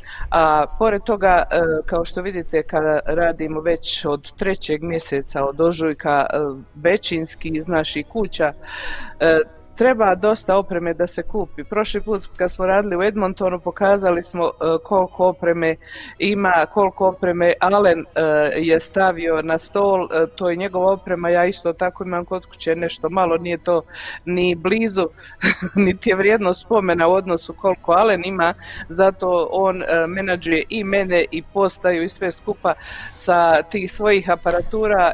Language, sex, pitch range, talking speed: Croatian, female, 165-195 Hz, 140 wpm